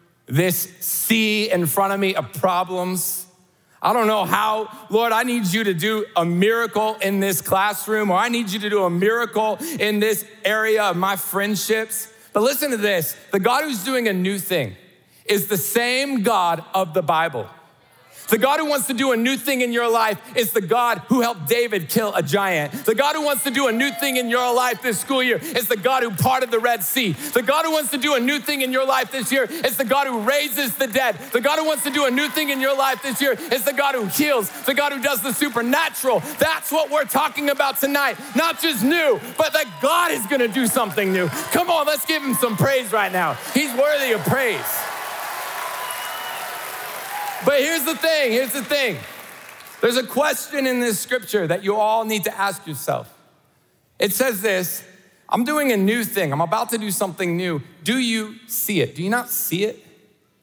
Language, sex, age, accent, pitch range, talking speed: English, male, 40-59, American, 195-270 Hz, 215 wpm